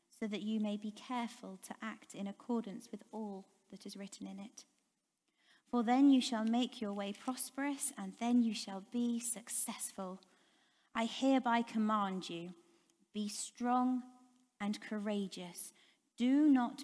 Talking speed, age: 145 wpm, 30-49